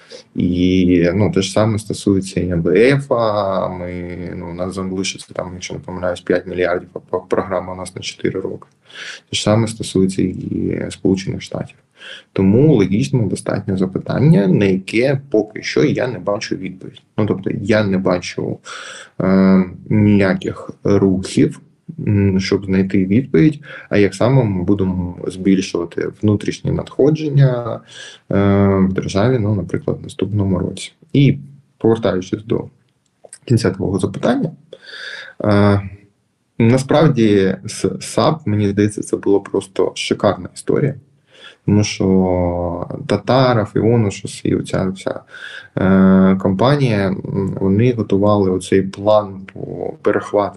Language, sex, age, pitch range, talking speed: Ukrainian, male, 20-39, 95-110 Hz, 125 wpm